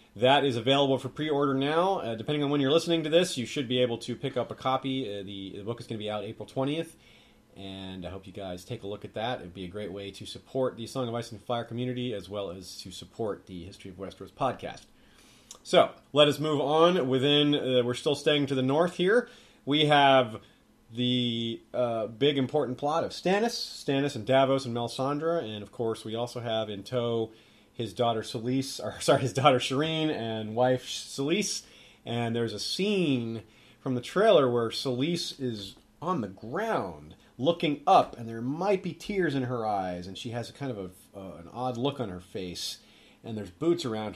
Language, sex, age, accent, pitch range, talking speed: English, male, 30-49, American, 110-145 Hz, 210 wpm